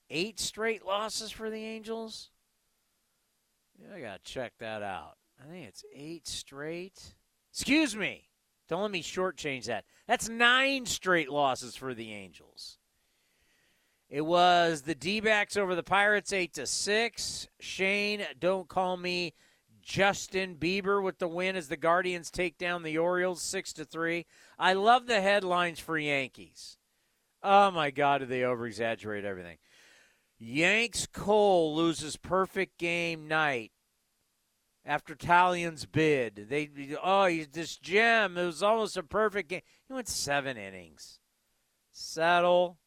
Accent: American